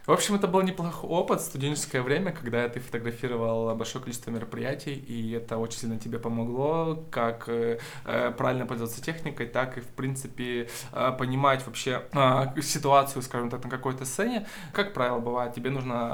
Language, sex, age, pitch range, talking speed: Russian, male, 20-39, 120-150 Hz, 155 wpm